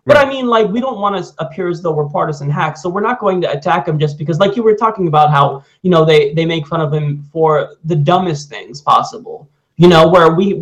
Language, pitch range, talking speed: English, 150-195 Hz, 260 wpm